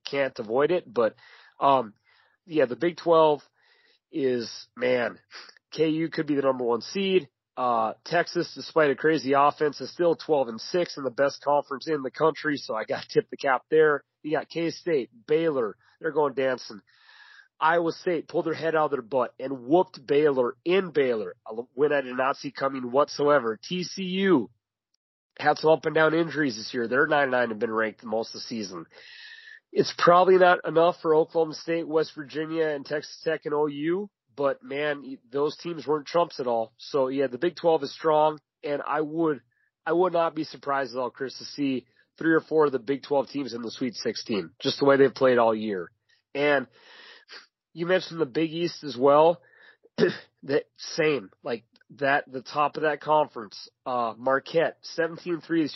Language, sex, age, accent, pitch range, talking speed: English, male, 30-49, American, 135-165 Hz, 190 wpm